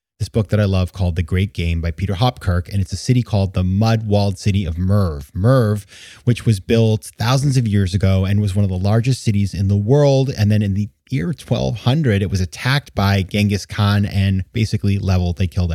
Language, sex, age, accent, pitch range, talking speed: English, male, 30-49, American, 95-120 Hz, 215 wpm